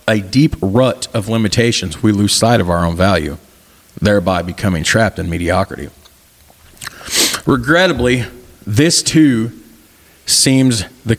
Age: 40-59